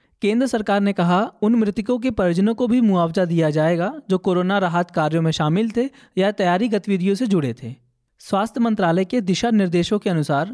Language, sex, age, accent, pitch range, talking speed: Hindi, male, 20-39, native, 170-215 Hz, 190 wpm